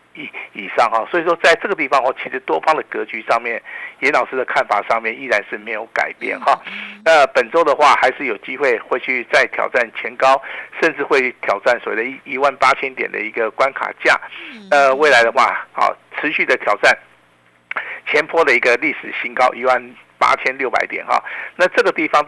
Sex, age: male, 50-69